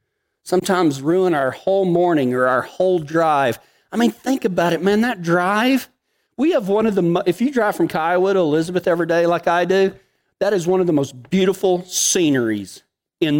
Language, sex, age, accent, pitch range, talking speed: English, male, 40-59, American, 140-195 Hz, 195 wpm